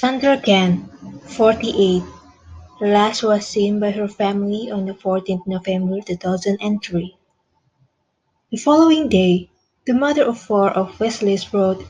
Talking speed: 140 wpm